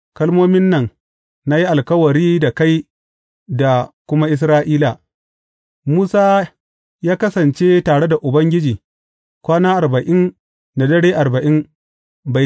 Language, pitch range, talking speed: English, 135-175 Hz, 145 wpm